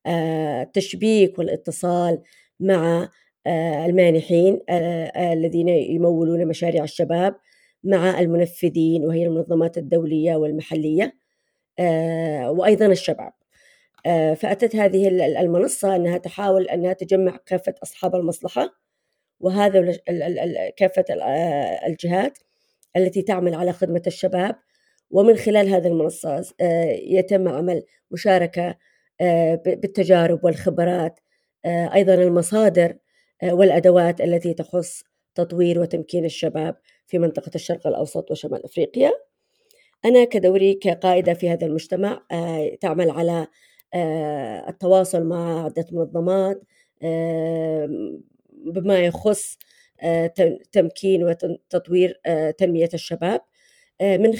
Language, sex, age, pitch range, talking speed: Arabic, female, 30-49, 165-190 Hz, 85 wpm